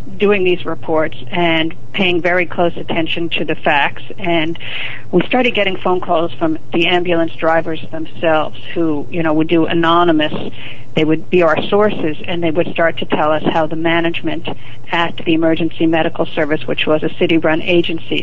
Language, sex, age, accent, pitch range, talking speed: English, female, 50-69, American, 160-180 Hz, 175 wpm